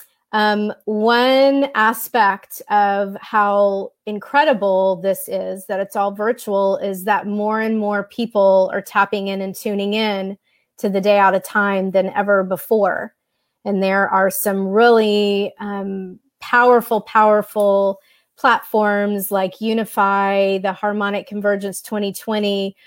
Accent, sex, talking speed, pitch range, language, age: American, female, 125 wpm, 195-215 Hz, English, 30-49